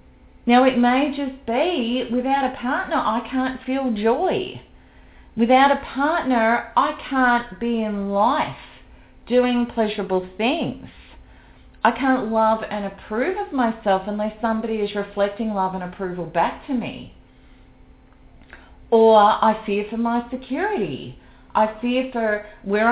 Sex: female